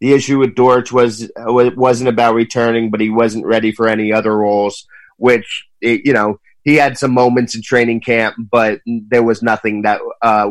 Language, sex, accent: English, male, American